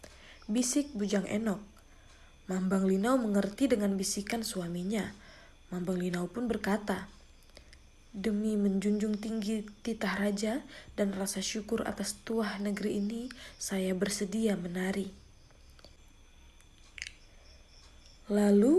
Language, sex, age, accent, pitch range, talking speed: Indonesian, female, 20-39, native, 190-235 Hz, 95 wpm